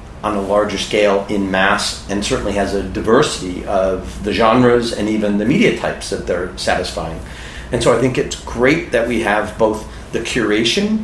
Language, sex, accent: English, male, American